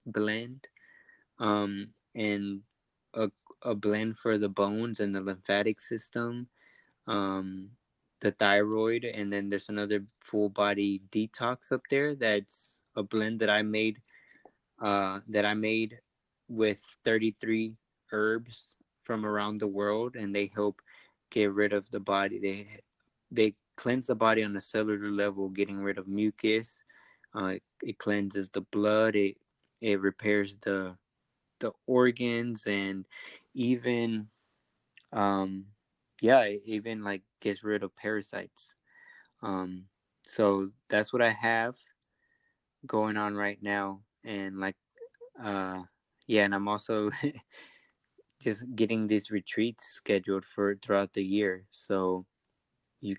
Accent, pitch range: American, 100-110 Hz